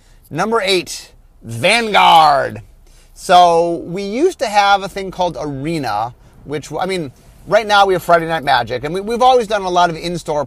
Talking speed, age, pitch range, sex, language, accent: 180 wpm, 30-49, 140-185 Hz, male, English, American